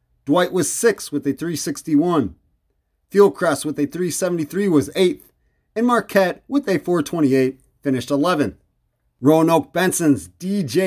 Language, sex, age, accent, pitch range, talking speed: English, male, 30-49, American, 135-185 Hz, 120 wpm